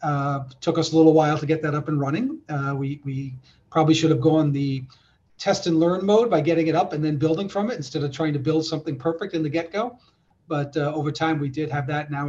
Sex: male